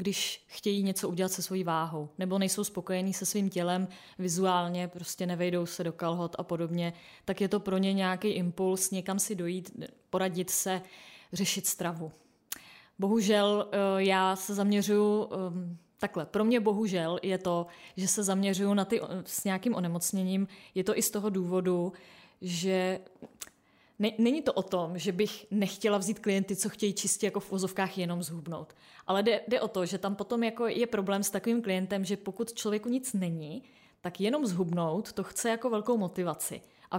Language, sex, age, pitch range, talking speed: Czech, female, 20-39, 185-220 Hz, 170 wpm